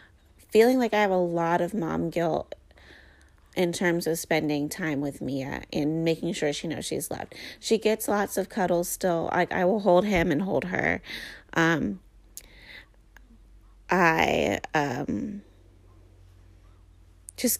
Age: 30-49